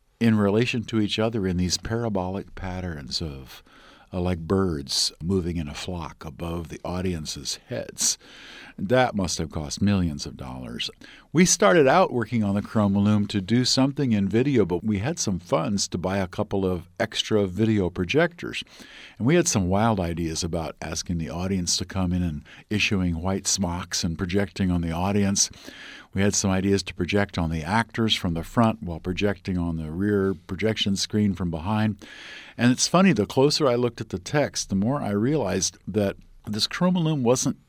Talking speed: 185 wpm